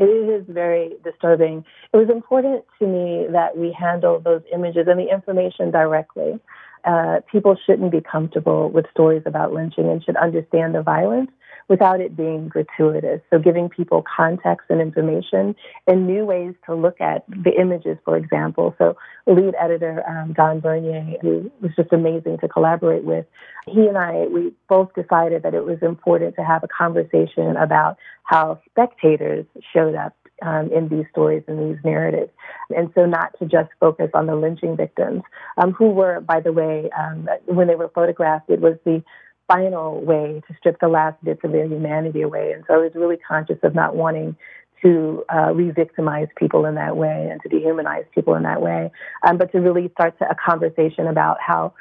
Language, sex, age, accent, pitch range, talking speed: English, female, 30-49, American, 155-180 Hz, 185 wpm